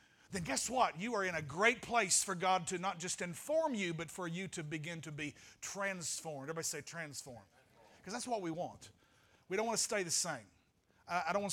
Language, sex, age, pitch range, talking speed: English, male, 40-59, 160-195 Hz, 220 wpm